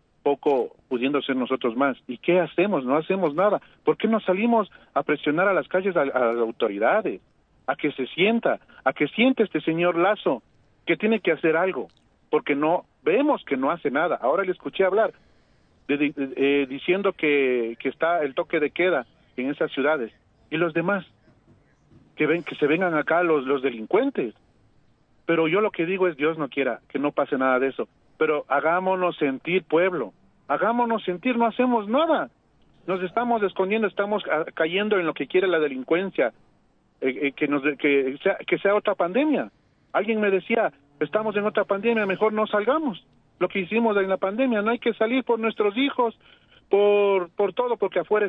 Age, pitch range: 40-59, 145-205 Hz